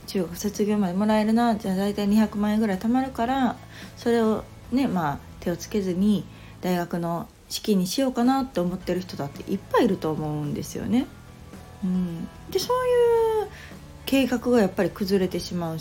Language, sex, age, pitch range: Japanese, female, 40-59, 160-230 Hz